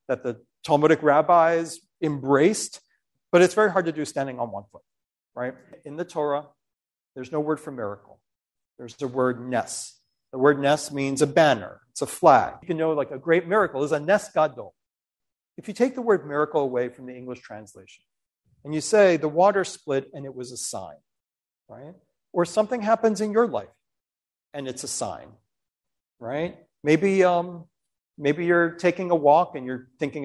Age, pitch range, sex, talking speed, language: 40-59, 130-175 Hz, male, 180 wpm, English